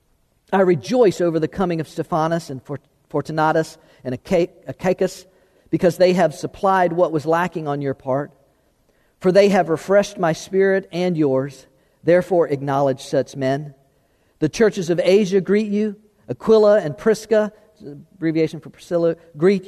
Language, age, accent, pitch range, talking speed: English, 50-69, American, 155-200 Hz, 140 wpm